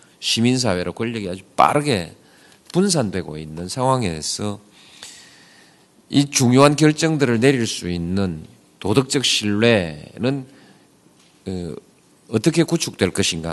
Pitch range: 100-150 Hz